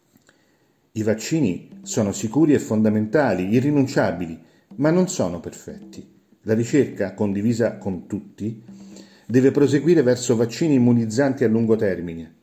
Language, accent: Italian, native